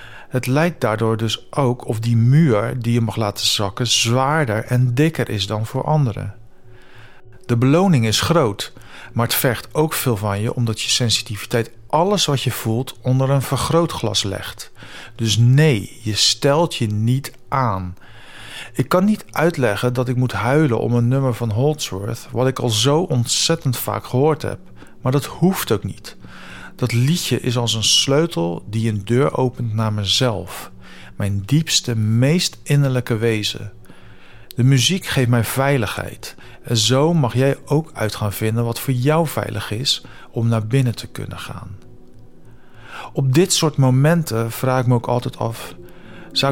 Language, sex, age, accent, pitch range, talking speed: Dutch, male, 40-59, Dutch, 110-140 Hz, 165 wpm